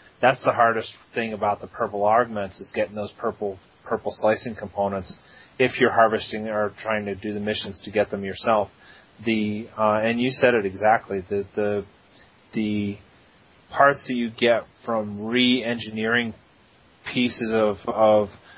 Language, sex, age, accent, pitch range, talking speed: English, male, 30-49, American, 100-115 Hz, 150 wpm